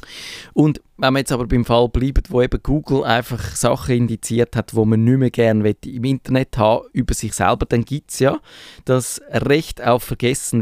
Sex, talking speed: male, 190 wpm